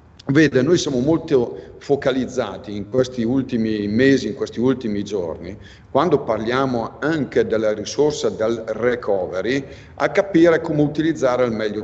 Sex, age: male, 50-69